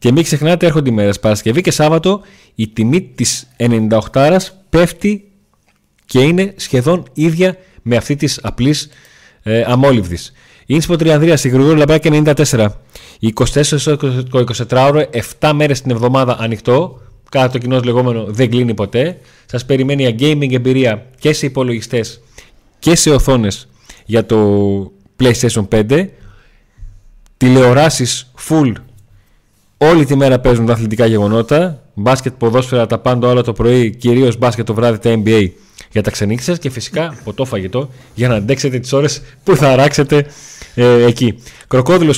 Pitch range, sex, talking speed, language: 115-150 Hz, male, 135 wpm, Greek